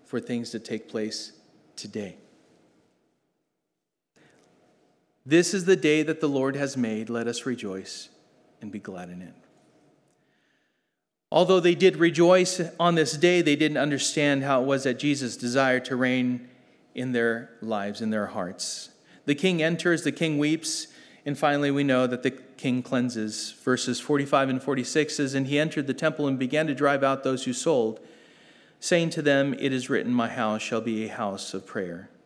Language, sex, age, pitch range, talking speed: English, male, 40-59, 120-145 Hz, 175 wpm